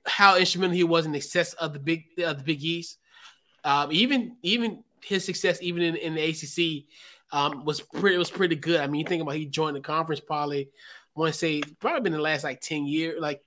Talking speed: 225 wpm